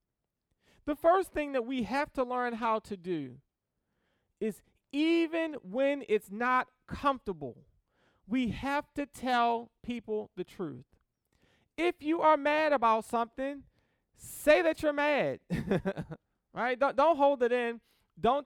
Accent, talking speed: American, 135 wpm